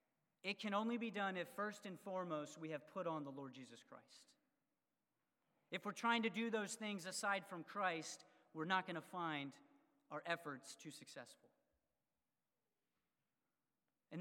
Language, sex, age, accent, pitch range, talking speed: English, male, 40-59, American, 160-200 Hz, 155 wpm